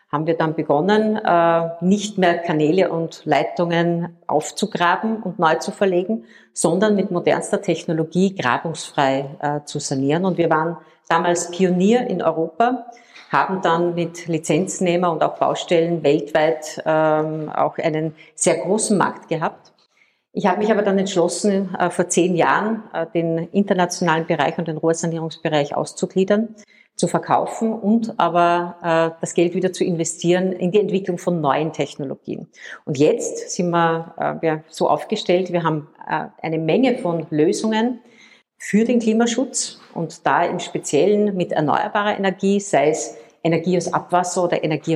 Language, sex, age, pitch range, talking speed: German, female, 50-69, 160-195 Hz, 140 wpm